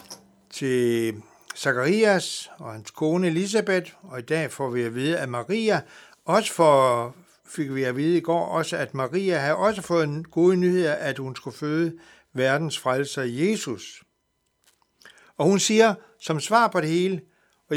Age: 60-79